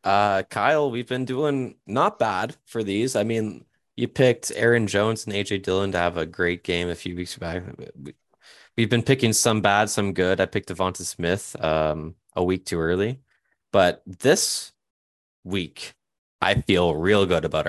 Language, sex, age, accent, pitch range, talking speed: English, male, 20-39, American, 90-120 Hz, 175 wpm